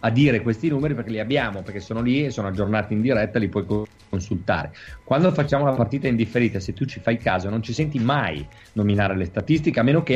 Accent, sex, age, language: native, male, 40-59, Italian